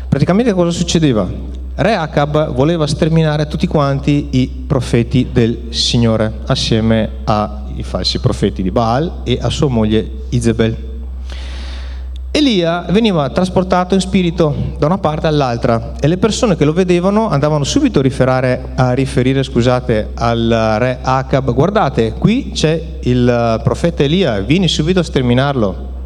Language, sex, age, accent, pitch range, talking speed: Italian, male, 30-49, native, 105-155 Hz, 130 wpm